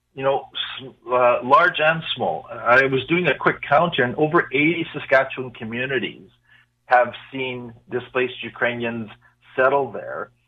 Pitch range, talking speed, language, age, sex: 115-135 Hz, 135 wpm, English, 40-59, male